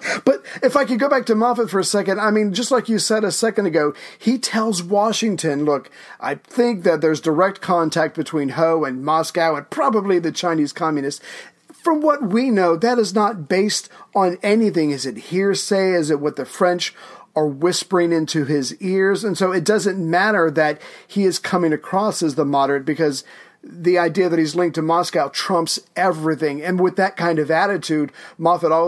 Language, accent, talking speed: English, American, 190 wpm